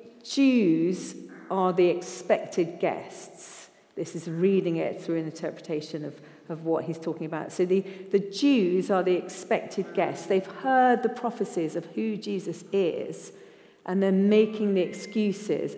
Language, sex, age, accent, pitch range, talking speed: English, female, 40-59, British, 165-205 Hz, 150 wpm